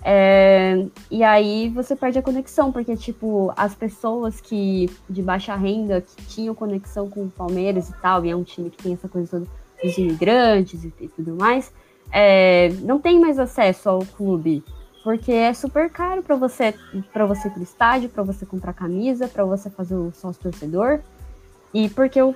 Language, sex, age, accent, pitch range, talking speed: Portuguese, female, 20-39, Brazilian, 185-245 Hz, 185 wpm